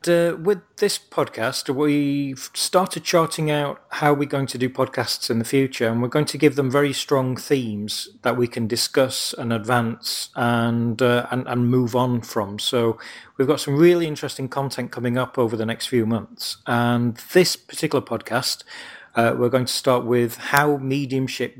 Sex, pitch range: male, 125-150 Hz